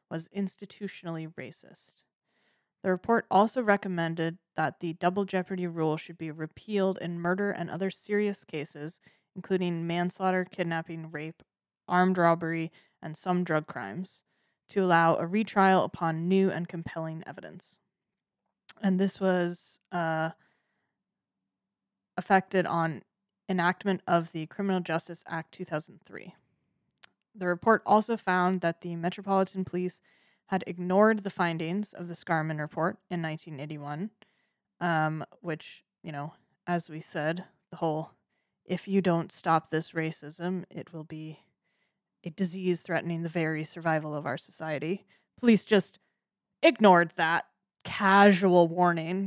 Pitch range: 165-190 Hz